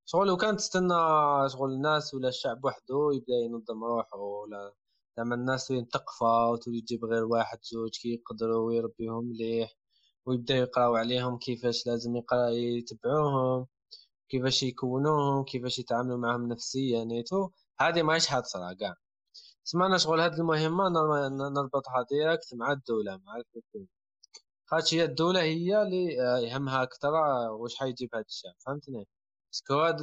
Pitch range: 120-160 Hz